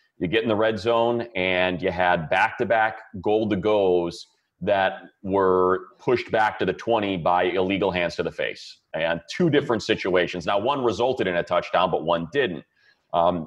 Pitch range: 90-115 Hz